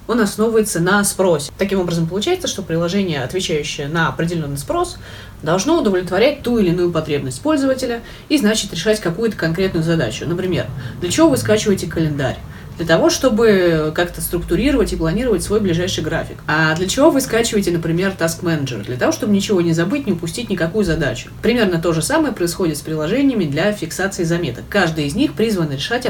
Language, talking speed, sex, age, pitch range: Russian, 170 wpm, female, 30-49, 160-220 Hz